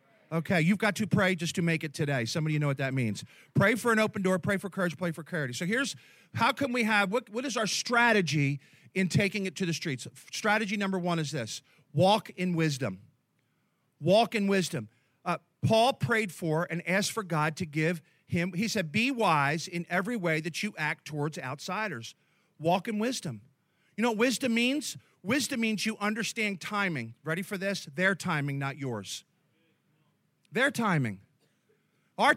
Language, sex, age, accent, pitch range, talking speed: English, male, 40-59, American, 160-215 Hz, 185 wpm